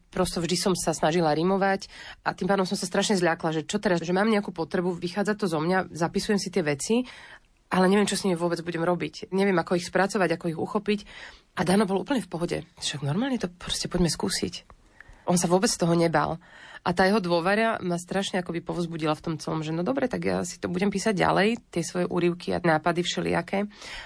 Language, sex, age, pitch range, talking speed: Slovak, female, 30-49, 170-195 Hz, 215 wpm